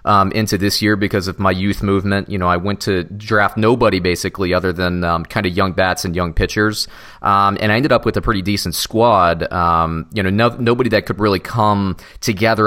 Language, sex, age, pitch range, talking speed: English, male, 30-49, 90-105 Hz, 225 wpm